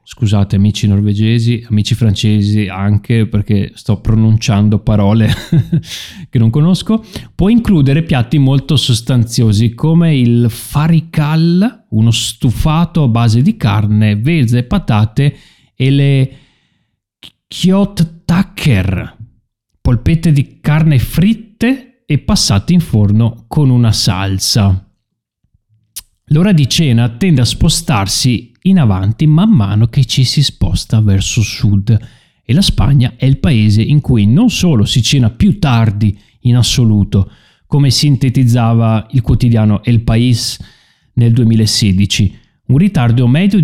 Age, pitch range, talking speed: 30-49, 110-150 Hz, 120 wpm